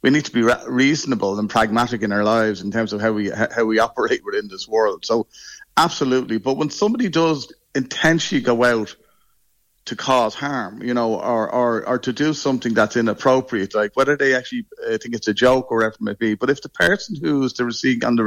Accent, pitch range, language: Irish, 110-135 Hz, English